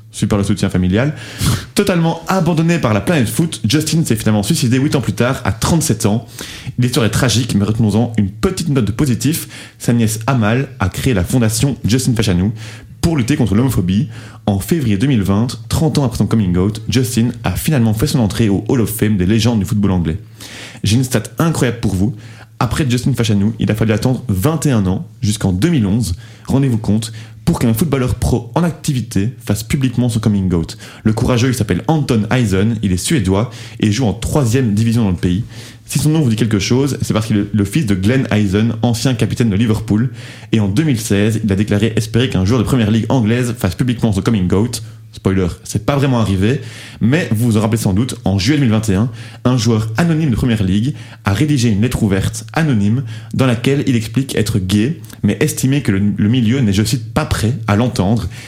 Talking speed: 205 wpm